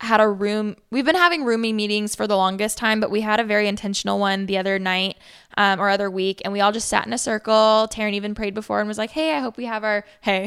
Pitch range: 200-235 Hz